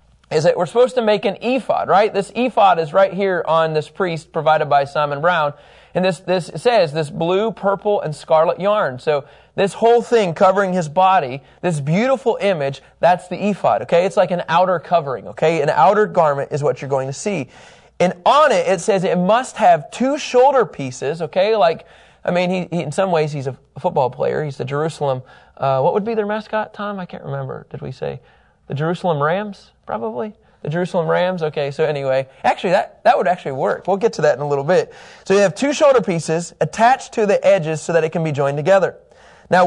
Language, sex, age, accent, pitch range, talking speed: English, male, 30-49, American, 155-210 Hz, 215 wpm